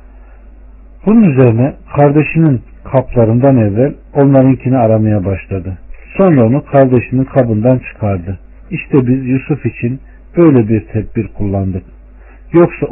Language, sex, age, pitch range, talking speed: Turkish, male, 50-69, 105-140 Hz, 100 wpm